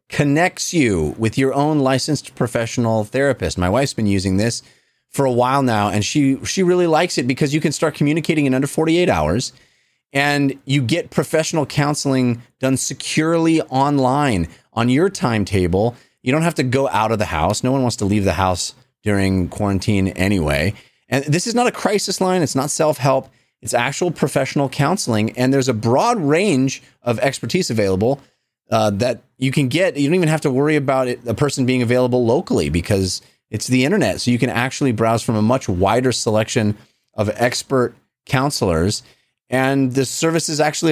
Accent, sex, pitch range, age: American, male, 115-145 Hz, 30-49